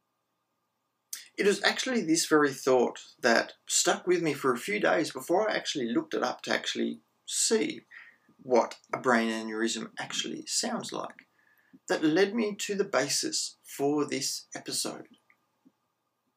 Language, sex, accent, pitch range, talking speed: English, male, Australian, 140-235 Hz, 145 wpm